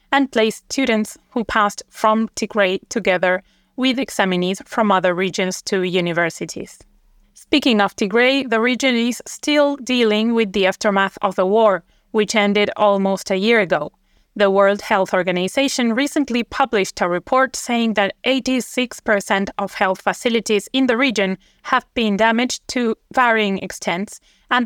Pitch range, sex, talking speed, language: 195-235 Hz, female, 145 wpm, English